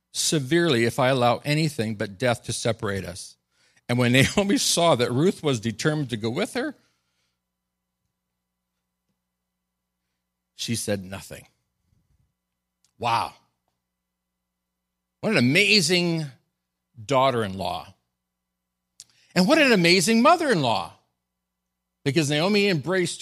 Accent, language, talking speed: American, English, 110 wpm